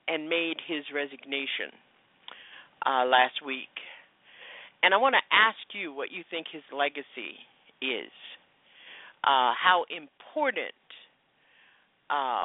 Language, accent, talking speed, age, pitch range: English, American, 110 wpm, 50-69, 140-230 Hz